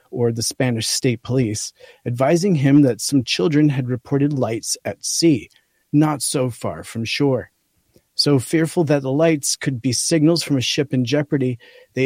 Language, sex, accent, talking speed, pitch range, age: English, male, American, 170 wpm, 125-150 Hz, 40-59